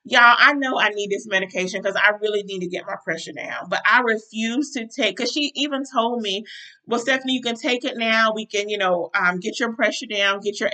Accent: American